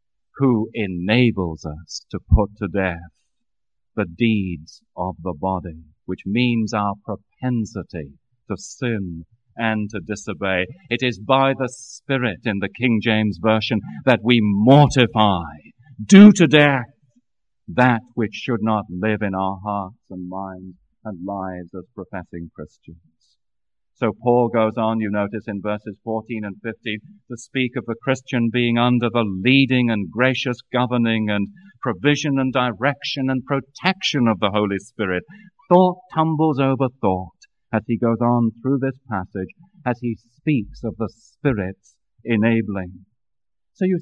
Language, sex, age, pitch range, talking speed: English, male, 40-59, 100-125 Hz, 145 wpm